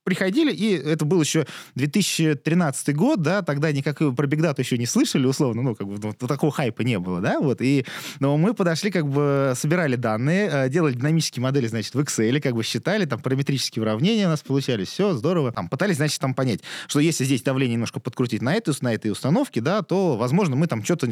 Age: 20-39